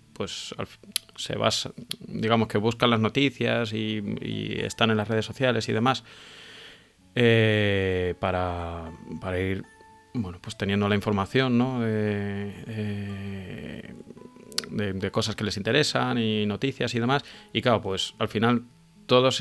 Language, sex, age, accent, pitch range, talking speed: Spanish, male, 30-49, Spanish, 95-115 Hz, 135 wpm